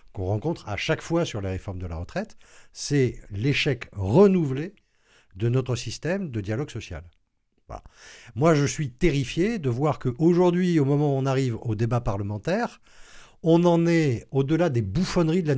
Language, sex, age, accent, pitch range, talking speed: French, male, 50-69, French, 110-160 Hz, 165 wpm